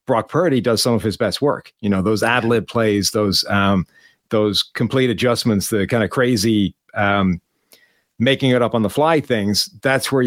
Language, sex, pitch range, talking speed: English, male, 105-125 Hz, 185 wpm